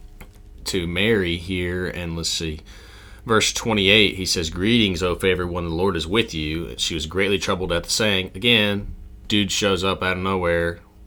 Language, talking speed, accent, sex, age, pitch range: English, 180 wpm, American, male, 30-49, 80-95 Hz